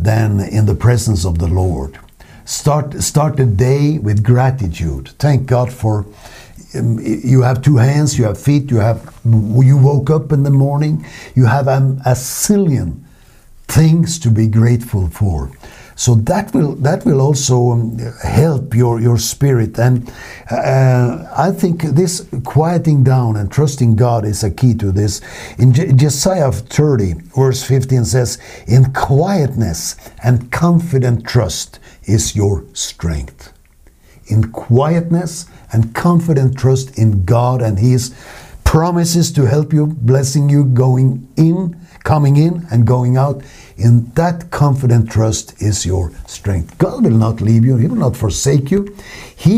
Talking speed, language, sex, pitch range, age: 150 wpm, English, male, 110-140 Hz, 60-79